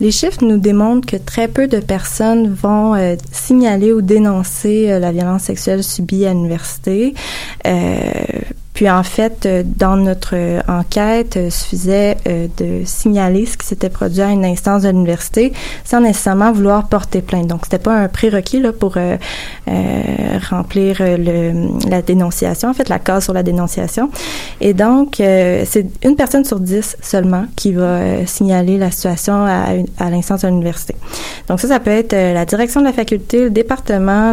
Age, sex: 20-39, female